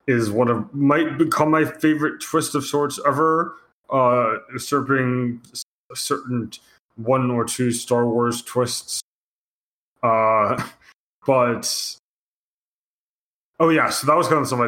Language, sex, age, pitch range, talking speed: English, male, 20-39, 115-145 Hz, 125 wpm